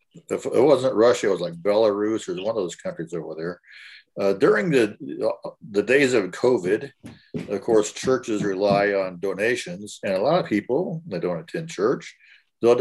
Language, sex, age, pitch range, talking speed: English, male, 50-69, 95-125 Hz, 180 wpm